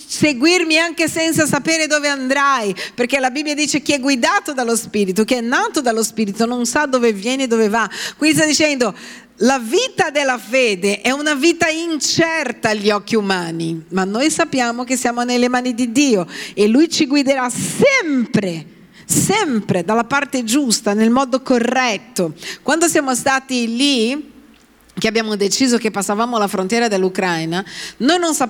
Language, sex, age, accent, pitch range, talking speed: Italian, female, 40-59, native, 195-270 Hz, 160 wpm